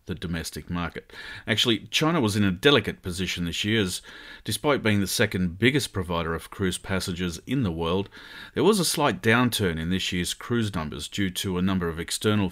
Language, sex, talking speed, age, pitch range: English, male, 195 wpm, 40-59, 90-110 Hz